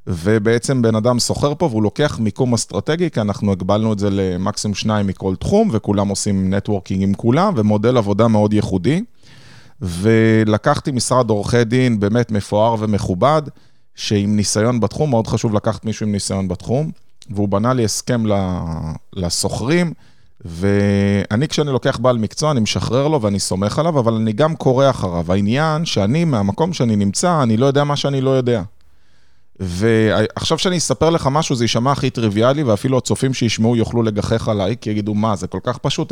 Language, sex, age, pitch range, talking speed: Hebrew, male, 30-49, 100-130 Hz, 165 wpm